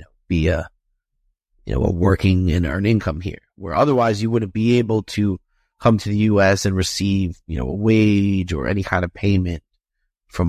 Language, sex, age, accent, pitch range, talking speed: English, male, 30-49, American, 95-110 Hz, 190 wpm